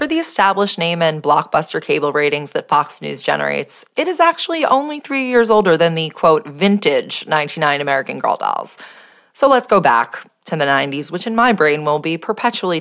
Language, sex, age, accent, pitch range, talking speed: English, female, 20-39, American, 145-225 Hz, 190 wpm